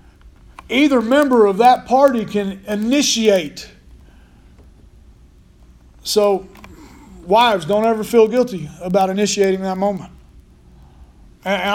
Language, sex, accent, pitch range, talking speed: English, male, American, 175-230 Hz, 90 wpm